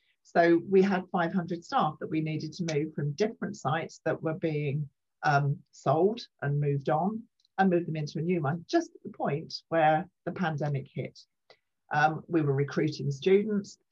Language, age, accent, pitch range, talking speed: English, 50-69, British, 155-185 Hz, 175 wpm